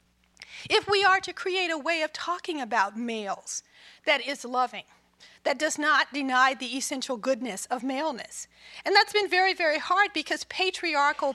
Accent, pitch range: American, 255-350 Hz